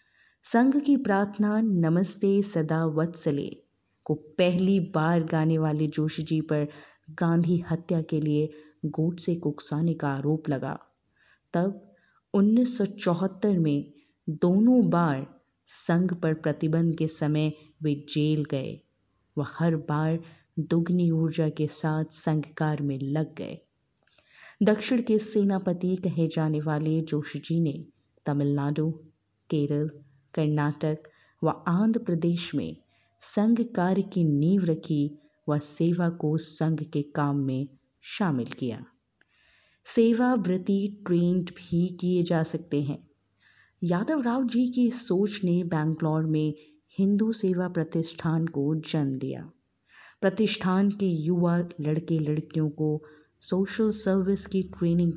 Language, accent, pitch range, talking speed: Hindi, native, 150-185 Hz, 120 wpm